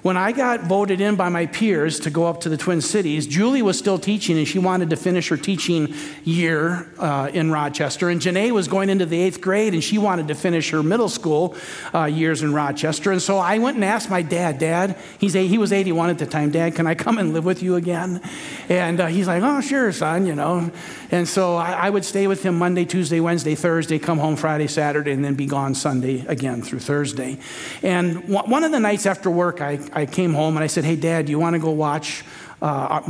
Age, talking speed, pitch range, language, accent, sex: 50-69, 240 wpm, 160-200 Hz, English, American, male